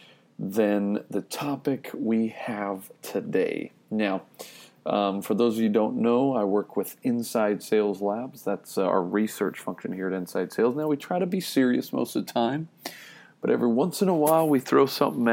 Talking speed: 190 wpm